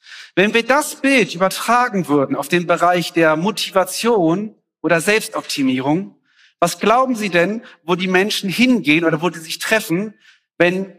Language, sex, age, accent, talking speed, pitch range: German, male, 40-59, German, 145 wpm, 160-245 Hz